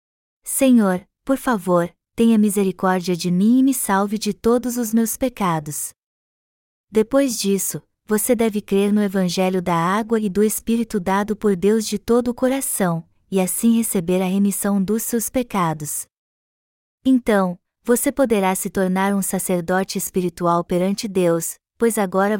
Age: 20-39